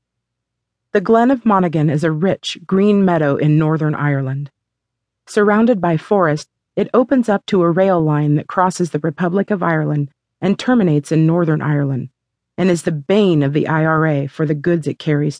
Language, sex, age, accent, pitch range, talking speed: English, female, 40-59, American, 145-190 Hz, 175 wpm